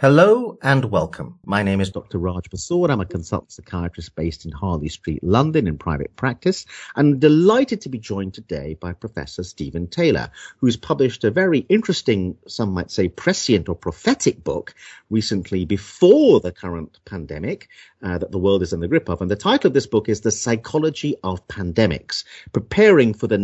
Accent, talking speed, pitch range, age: British, 180 wpm, 95-145 Hz, 50-69